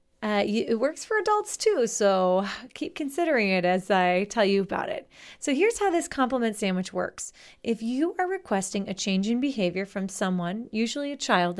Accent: American